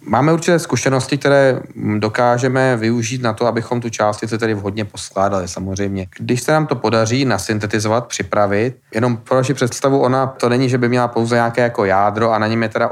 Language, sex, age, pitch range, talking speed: Czech, male, 30-49, 105-125 Hz, 195 wpm